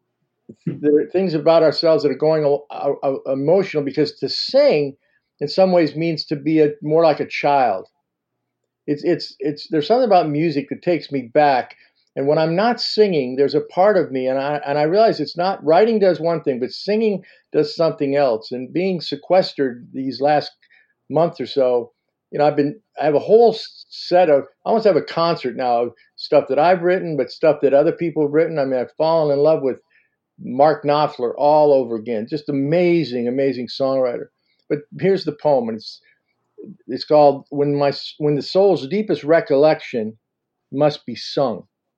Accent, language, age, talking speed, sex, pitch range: American, English, 50-69, 190 wpm, male, 140-170 Hz